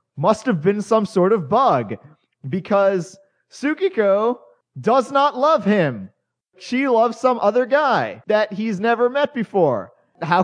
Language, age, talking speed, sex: English, 30-49, 140 wpm, male